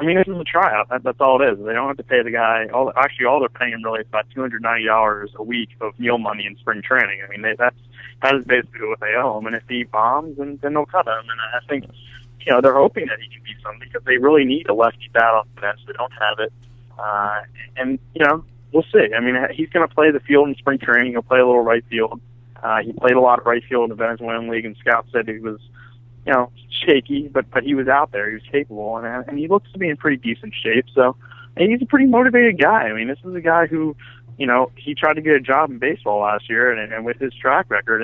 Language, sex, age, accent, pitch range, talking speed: English, male, 30-49, American, 115-135 Hz, 275 wpm